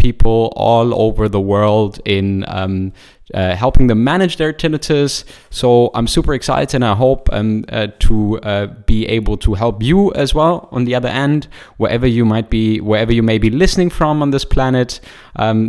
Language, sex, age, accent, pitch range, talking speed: English, male, 20-39, German, 105-135 Hz, 185 wpm